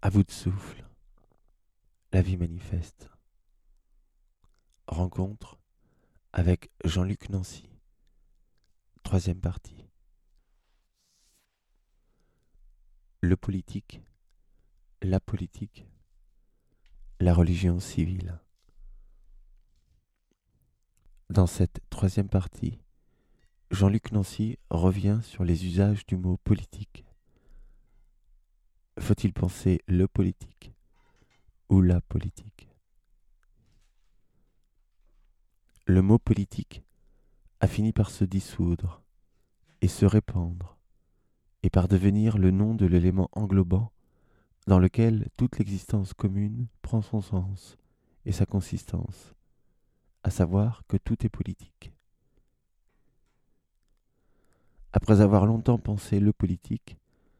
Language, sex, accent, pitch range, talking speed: French, male, French, 90-105 Hz, 85 wpm